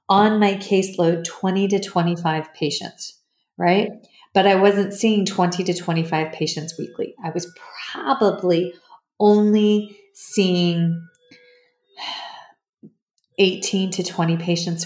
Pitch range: 165-200 Hz